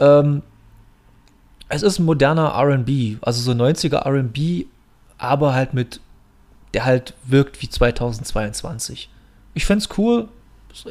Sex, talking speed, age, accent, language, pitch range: male, 115 wpm, 30-49, German, German, 125-150 Hz